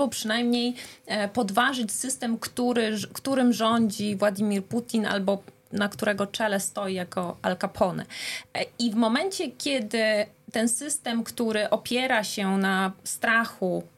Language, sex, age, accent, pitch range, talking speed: Polish, female, 30-49, native, 200-240 Hz, 120 wpm